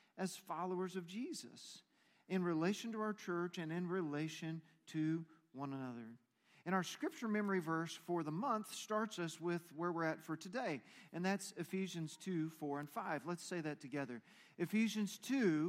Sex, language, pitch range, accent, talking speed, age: male, English, 155-205 Hz, American, 170 wpm, 40-59